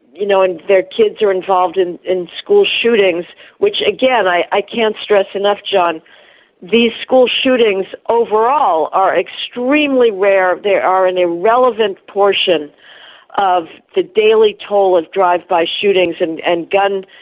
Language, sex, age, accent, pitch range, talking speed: English, female, 50-69, American, 180-235 Hz, 145 wpm